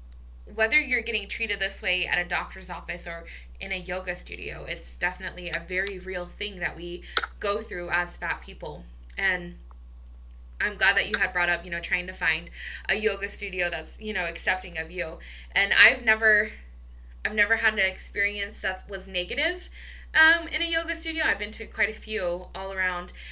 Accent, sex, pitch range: American, female, 175-215 Hz